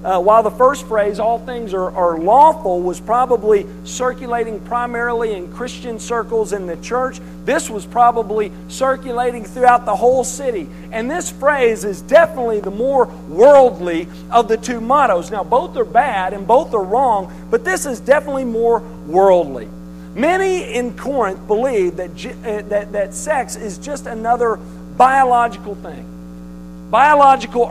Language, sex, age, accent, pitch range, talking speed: English, male, 50-69, American, 170-250 Hz, 150 wpm